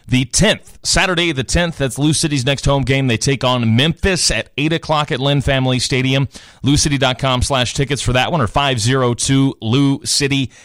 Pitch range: 120-150 Hz